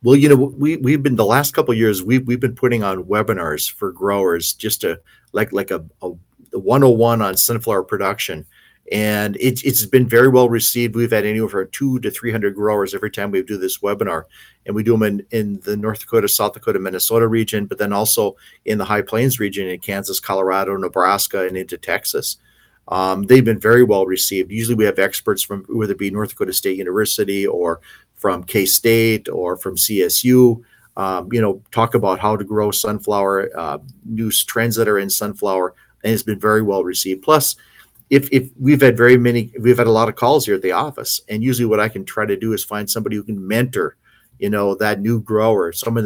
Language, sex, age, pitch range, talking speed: English, male, 40-59, 100-120 Hz, 210 wpm